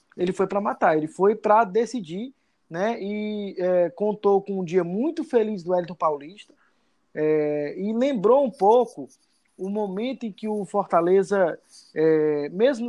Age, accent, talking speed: 20-39, Brazilian, 140 wpm